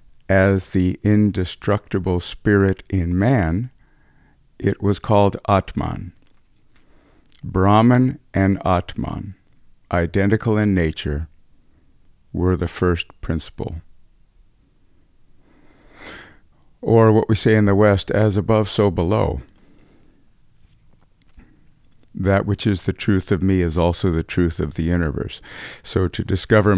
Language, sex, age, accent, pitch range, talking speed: English, male, 50-69, American, 90-105 Hz, 110 wpm